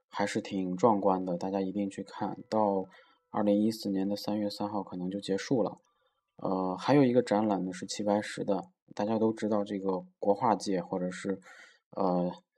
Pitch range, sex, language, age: 95-110 Hz, male, Chinese, 20-39